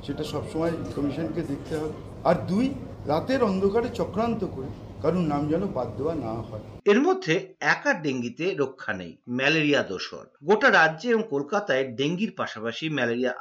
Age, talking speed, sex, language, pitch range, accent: 50-69, 140 wpm, male, Bengali, 140-195 Hz, native